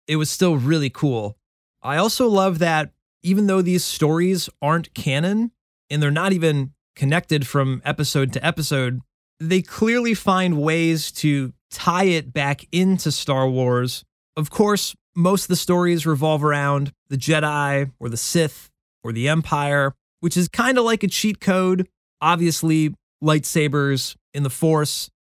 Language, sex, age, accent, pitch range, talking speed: English, male, 20-39, American, 145-175 Hz, 150 wpm